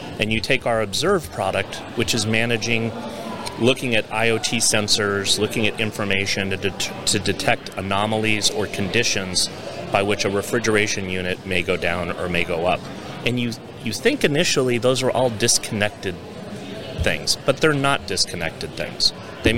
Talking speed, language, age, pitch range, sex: 155 wpm, English, 30-49, 100-120 Hz, male